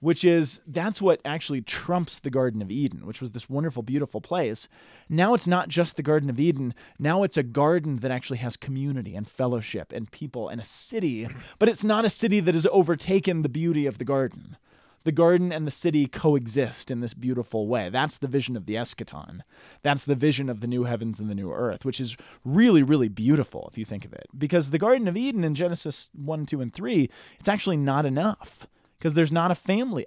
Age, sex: 20-39, male